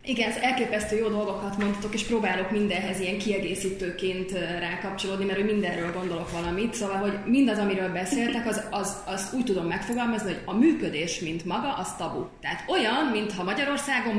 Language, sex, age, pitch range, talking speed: Hungarian, female, 20-39, 185-225 Hz, 160 wpm